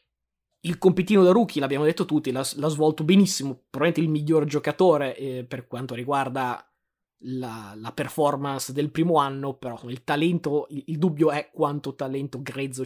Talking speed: 160 wpm